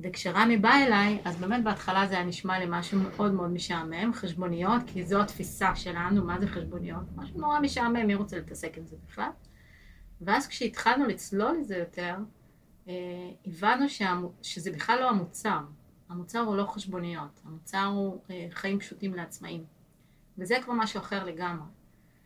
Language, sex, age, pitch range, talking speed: Hebrew, female, 30-49, 175-210 Hz, 155 wpm